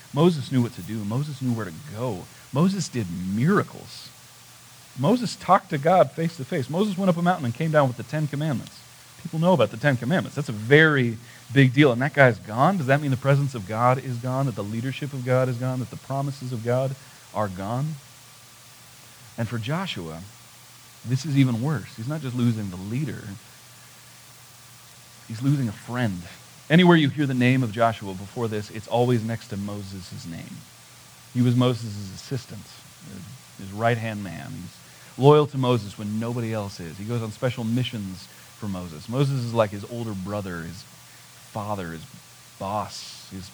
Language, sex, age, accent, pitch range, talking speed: English, male, 40-59, American, 110-140 Hz, 185 wpm